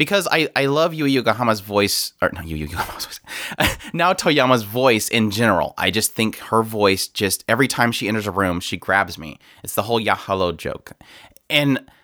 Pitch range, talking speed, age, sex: 100-140 Hz, 180 wpm, 30-49, male